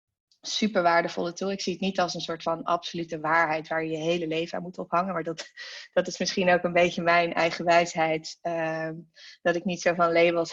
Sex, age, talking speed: female, 20-39, 215 wpm